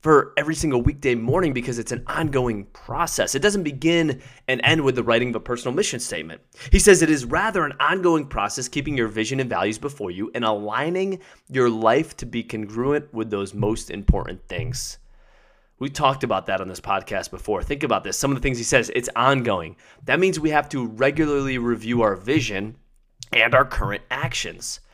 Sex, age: male, 20-39